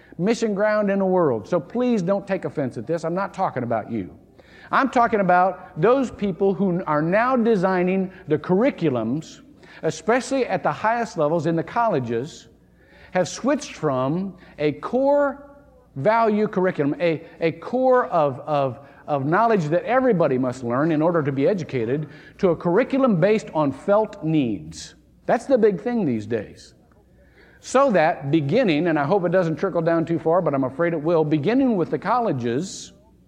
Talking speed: 170 wpm